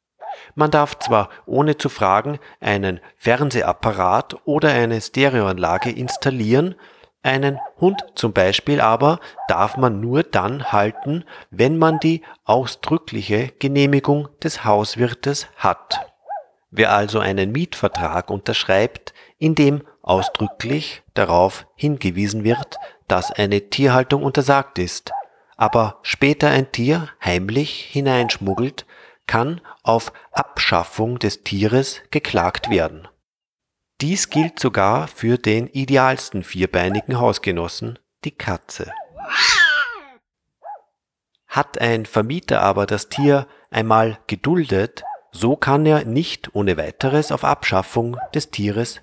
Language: German